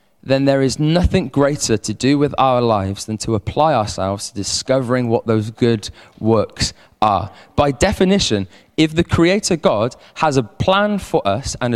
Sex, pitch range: male, 130-185 Hz